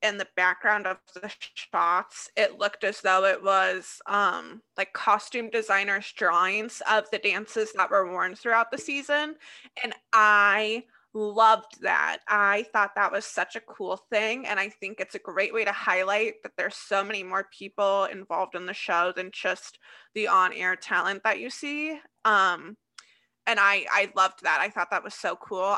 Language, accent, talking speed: English, American, 180 wpm